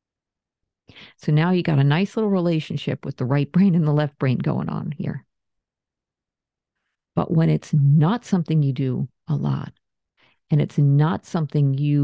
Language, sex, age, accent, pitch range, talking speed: English, female, 50-69, American, 140-195 Hz, 165 wpm